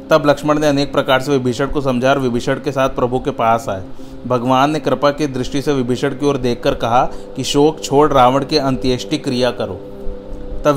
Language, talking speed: Hindi, 205 wpm